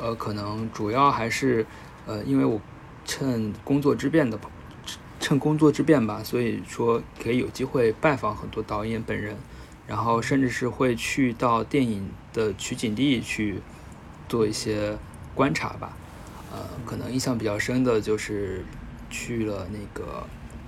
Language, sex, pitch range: Chinese, male, 105-130 Hz